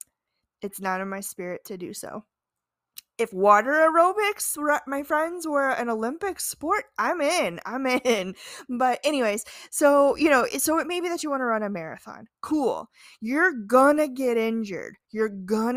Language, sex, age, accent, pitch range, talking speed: English, female, 20-39, American, 200-270 Hz, 170 wpm